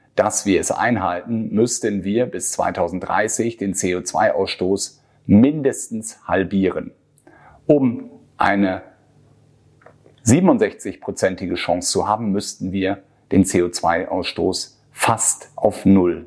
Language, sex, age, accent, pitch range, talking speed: German, male, 40-59, German, 95-115 Hz, 90 wpm